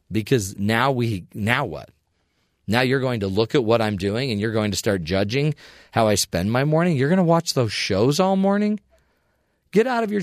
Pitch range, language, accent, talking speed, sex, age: 105-140 Hz, English, American, 215 wpm, male, 40-59